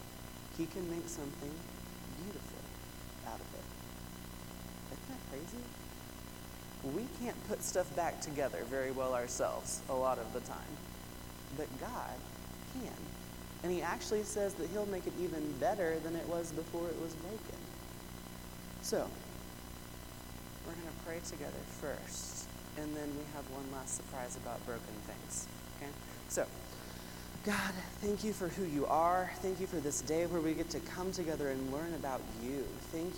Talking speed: 155 wpm